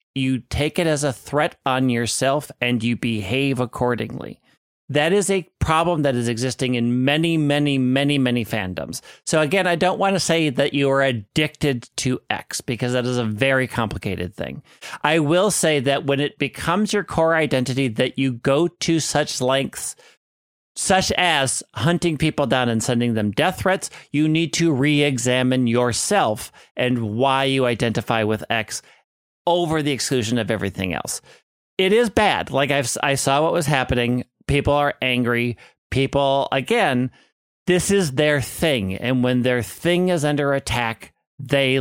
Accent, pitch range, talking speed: American, 120-150 Hz, 165 wpm